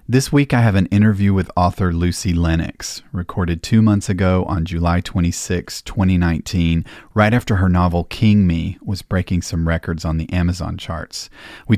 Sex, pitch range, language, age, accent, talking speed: male, 85-100 Hz, English, 40-59, American, 170 wpm